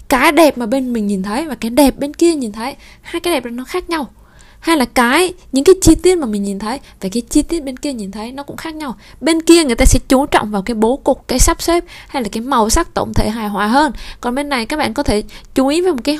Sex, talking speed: female, 295 wpm